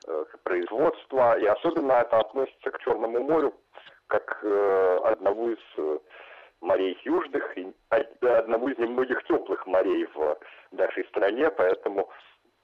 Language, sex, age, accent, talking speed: Russian, male, 40-59, native, 110 wpm